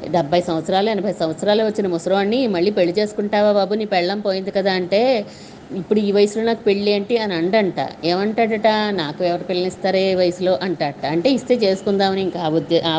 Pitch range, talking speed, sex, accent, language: 170-225 Hz, 155 wpm, female, native, Telugu